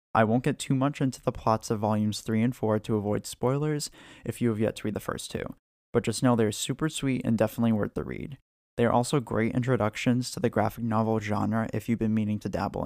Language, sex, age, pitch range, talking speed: English, male, 20-39, 105-115 Hz, 245 wpm